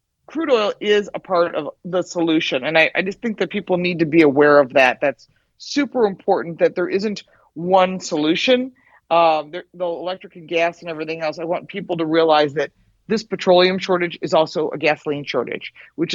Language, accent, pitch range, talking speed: English, American, 155-200 Hz, 195 wpm